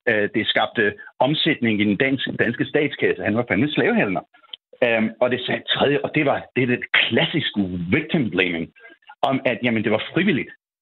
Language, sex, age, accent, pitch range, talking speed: Danish, male, 60-79, native, 115-155 Hz, 165 wpm